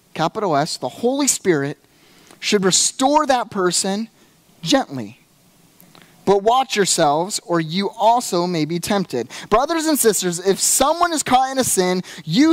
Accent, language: American, English